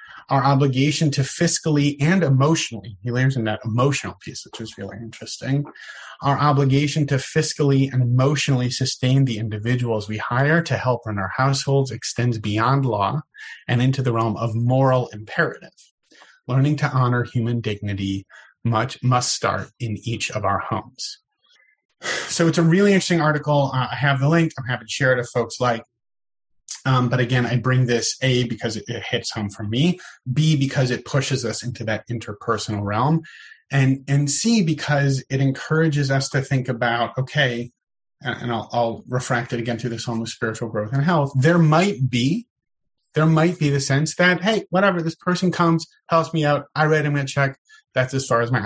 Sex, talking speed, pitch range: male, 185 wpm, 115-150 Hz